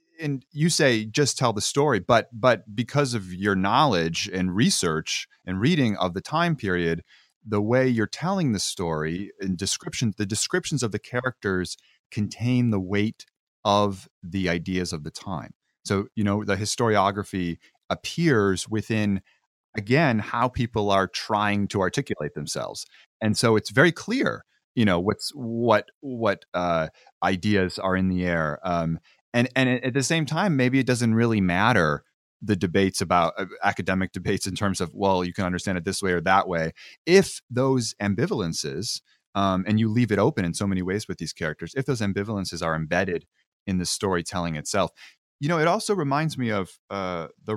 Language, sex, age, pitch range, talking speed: English, male, 30-49, 90-120 Hz, 175 wpm